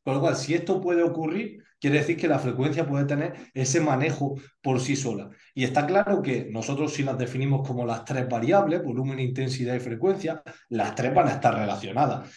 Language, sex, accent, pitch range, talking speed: Spanish, male, Spanish, 120-155 Hz, 200 wpm